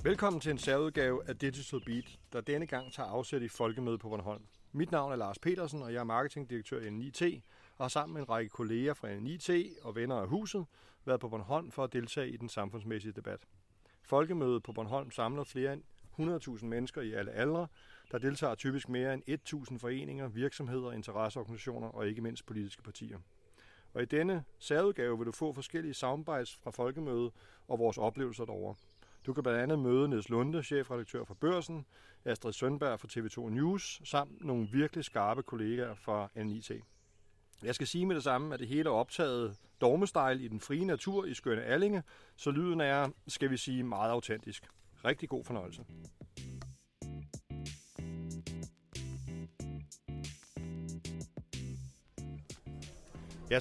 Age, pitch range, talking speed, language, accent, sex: 40-59, 105-150 Hz, 160 wpm, Danish, native, male